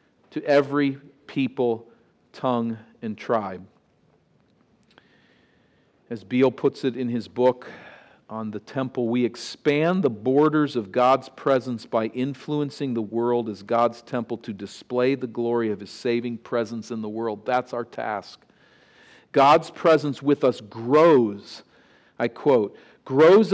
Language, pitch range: English, 115-145 Hz